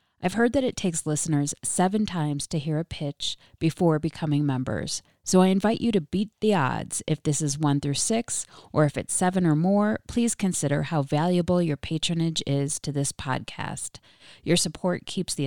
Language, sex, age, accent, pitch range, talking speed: English, female, 30-49, American, 145-180 Hz, 190 wpm